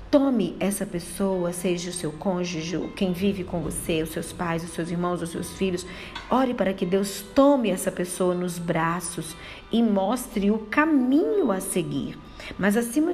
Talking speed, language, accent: 170 wpm, Portuguese, Brazilian